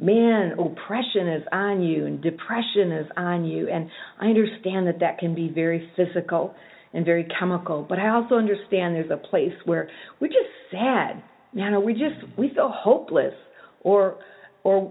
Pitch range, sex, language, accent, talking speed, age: 170-210 Hz, female, English, American, 170 wpm, 40-59